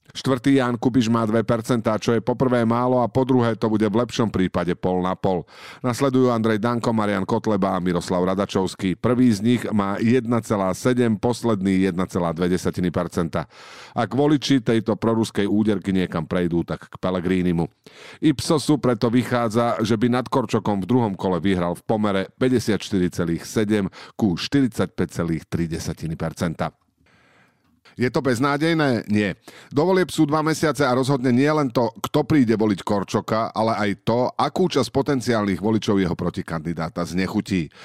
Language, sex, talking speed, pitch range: Slovak, male, 140 wpm, 95-130 Hz